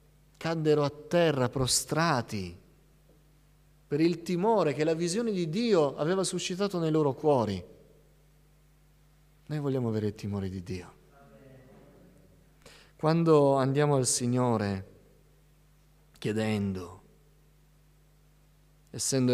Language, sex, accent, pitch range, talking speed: Italian, male, native, 105-150 Hz, 95 wpm